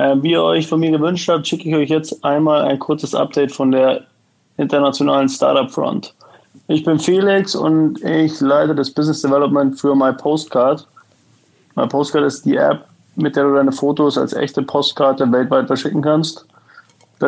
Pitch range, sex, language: 125-150 Hz, male, German